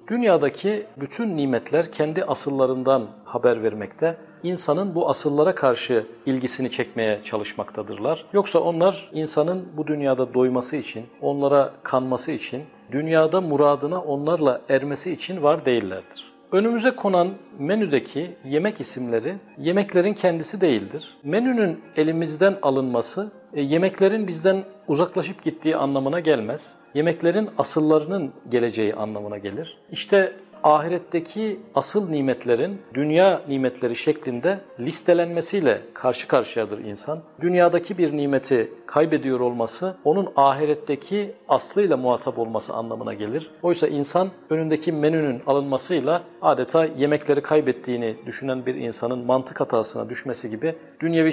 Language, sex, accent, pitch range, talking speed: Turkish, male, native, 130-175 Hz, 110 wpm